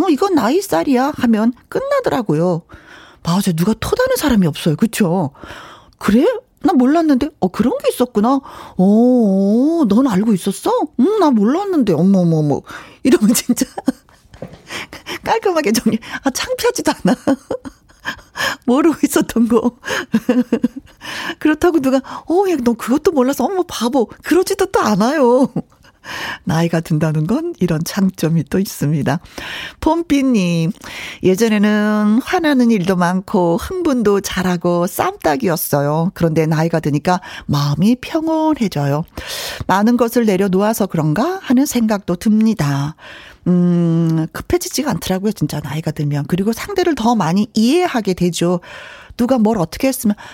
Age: 40-59